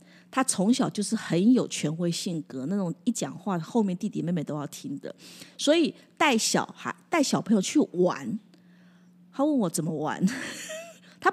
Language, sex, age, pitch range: Chinese, female, 30-49, 180-245 Hz